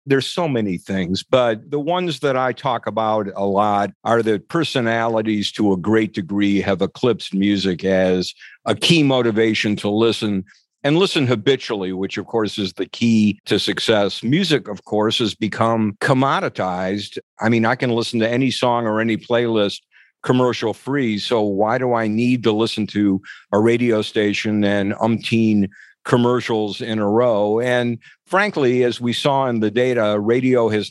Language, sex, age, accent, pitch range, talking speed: English, male, 50-69, American, 105-125 Hz, 165 wpm